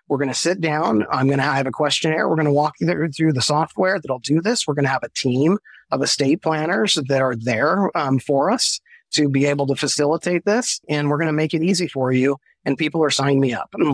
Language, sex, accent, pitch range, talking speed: English, male, American, 130-155 Hz, 255 wpm